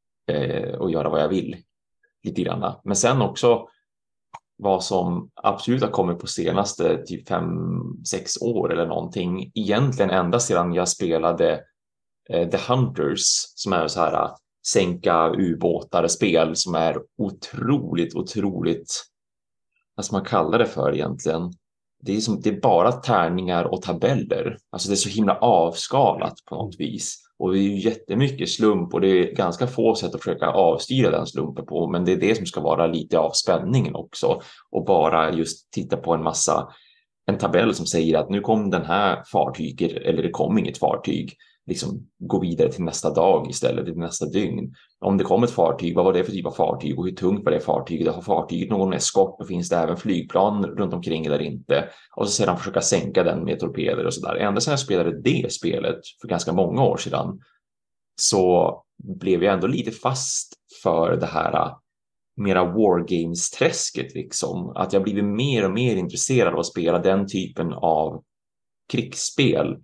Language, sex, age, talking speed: Swedish, male, 30-49, 175 wpm